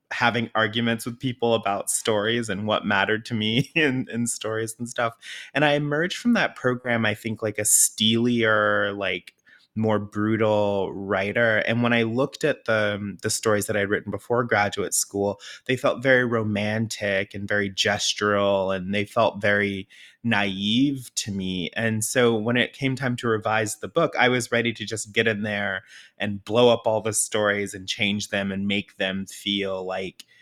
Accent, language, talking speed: American, English, 180 wpm